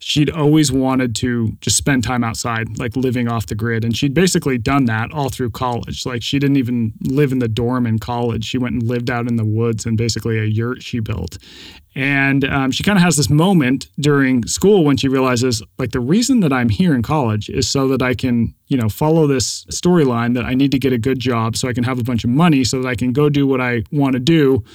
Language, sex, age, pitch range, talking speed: English, male, 30-49, 115-135 Hz, 250 wpm